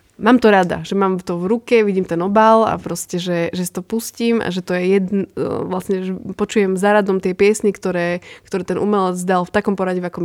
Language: Slovak